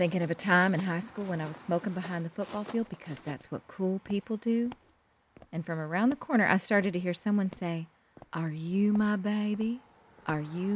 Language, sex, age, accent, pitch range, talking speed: English, female, 30-49, American, 180-265 Hz, 210 wpm